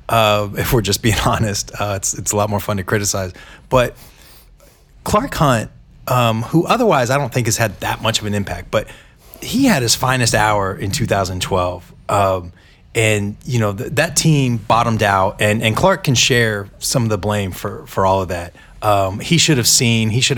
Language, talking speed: English, 205 wpm